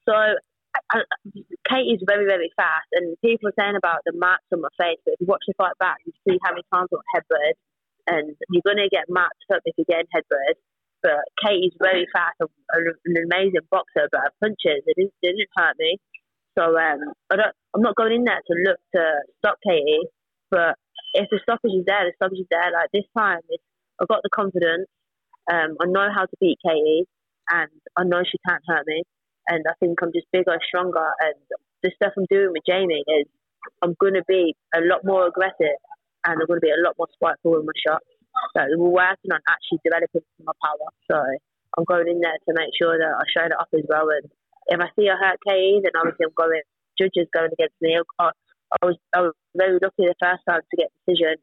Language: English